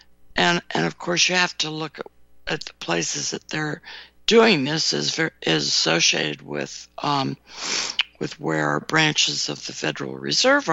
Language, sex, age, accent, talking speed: English, female, 60-79, American, 155 wpm